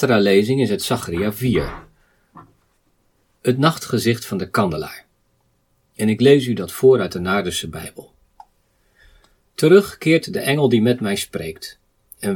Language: Dutch